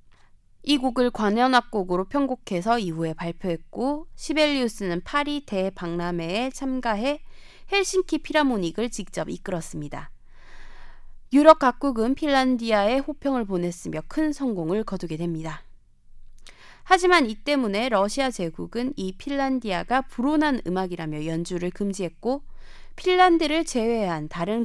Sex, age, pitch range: female, 20-39, 175-260 Hz